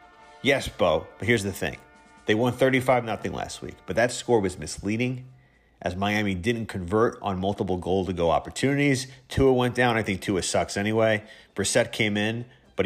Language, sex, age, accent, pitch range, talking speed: English, male, 30-49, American, 95-125 Hz, 170 wpm